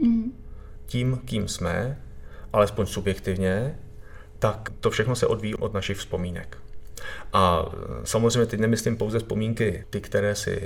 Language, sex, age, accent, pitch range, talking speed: Czech, male, 30-49, native, 100-110 Hz, 125 wpm